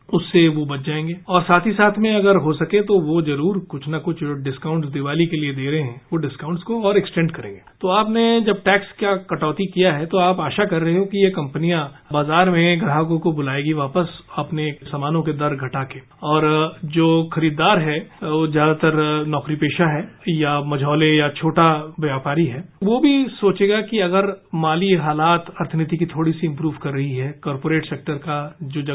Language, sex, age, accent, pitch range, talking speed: English, male, 40-59, Indian, 150-185 Hz, 125 wpm